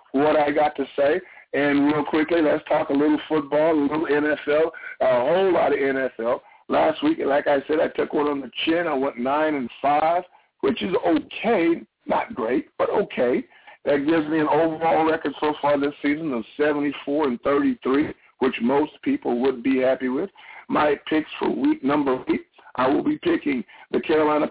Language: English